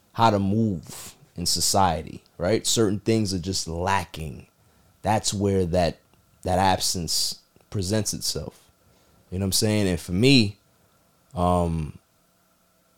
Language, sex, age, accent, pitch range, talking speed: English, male, 30-49, American, 90-115 Hz, 125 wpm